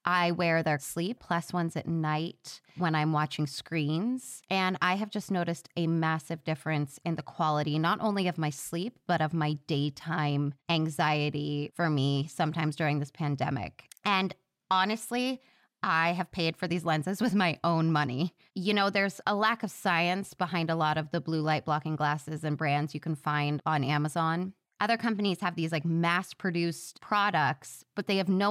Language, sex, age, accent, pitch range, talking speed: English, female, 20-39, American, 155-185 Hz, 180 wpm